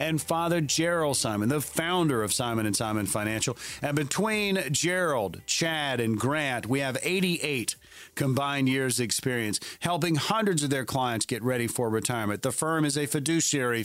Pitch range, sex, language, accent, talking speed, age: 115-160 Hz, male, English, American, 165 wpm, 40-59